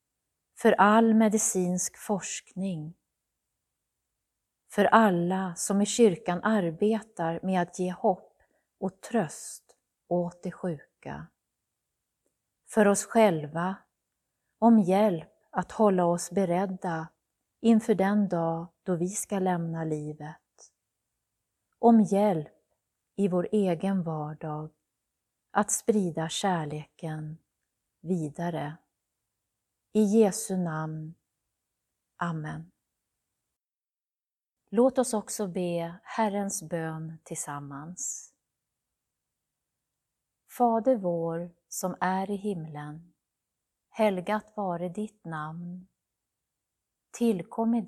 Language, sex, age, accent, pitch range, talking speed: Swedish, female, 30-49, native, 165-205 Hz, 85 wpm